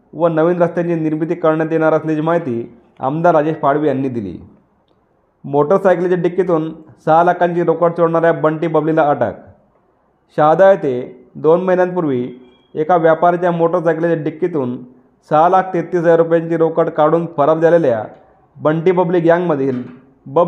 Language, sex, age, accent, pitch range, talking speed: Marathi, male, 30-49, native, 145-175 Hz, 115 wpm